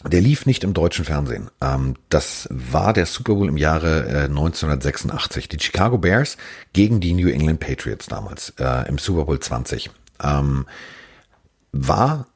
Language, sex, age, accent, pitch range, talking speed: German, male, 40-59, German, 75-95 Hz, 135 wpm